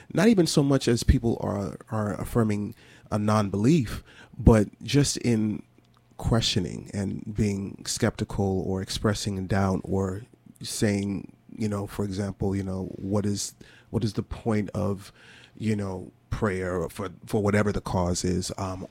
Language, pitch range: English, 100-115 Hz